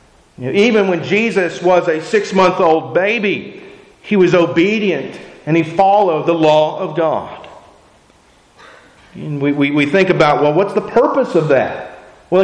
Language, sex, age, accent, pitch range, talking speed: English, male, 40-59, American, 170-215 Hz, 135 wpm